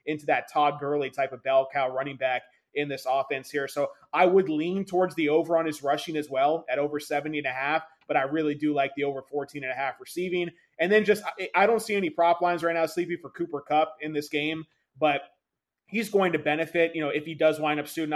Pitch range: 145-160 Hz